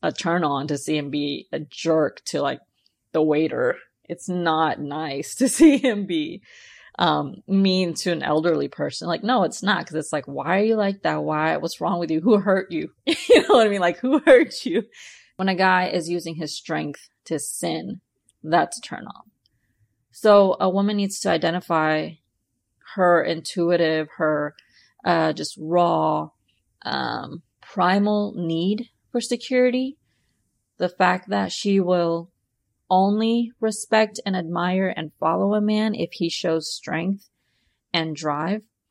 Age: 20-39